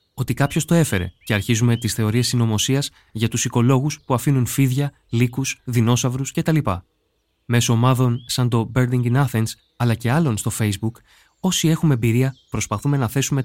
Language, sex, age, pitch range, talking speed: Greek, male, 20-39, 110-140 Hz, 160 wpm